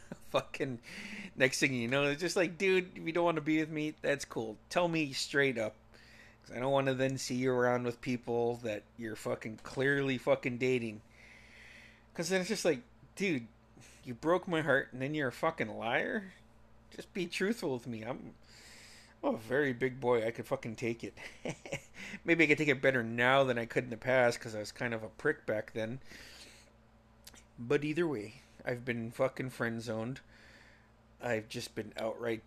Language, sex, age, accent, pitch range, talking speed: English, male, 30-49, American, 115-140 Hz, 195 wpm